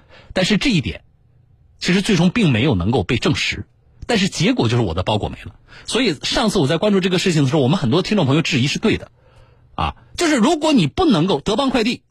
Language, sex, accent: Chinese, male, native